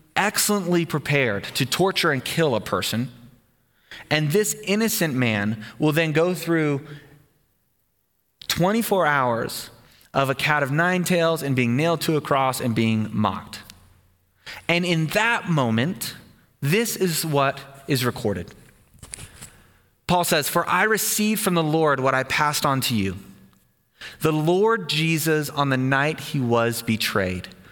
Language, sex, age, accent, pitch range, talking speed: English, male, 30-49, American, 125-175 Hz, 140 wpm